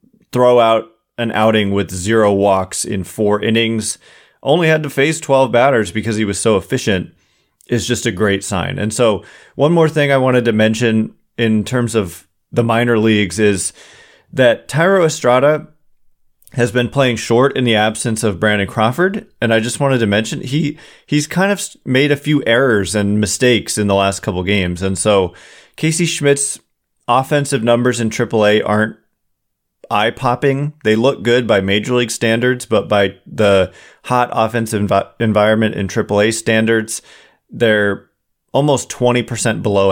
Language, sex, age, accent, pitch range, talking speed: English, male, 30-49, American, 105-130 Hz, 160 wpm